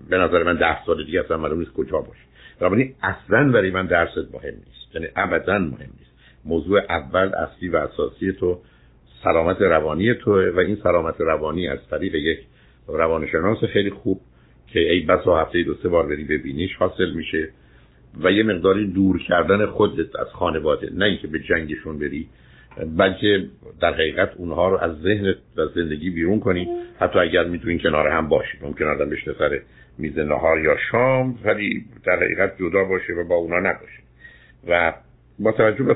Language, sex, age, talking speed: Persian, male, 60-79, 170 wpm